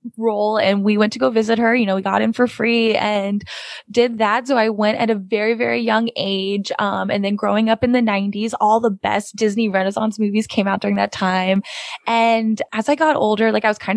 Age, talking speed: 20-39, 235 wpm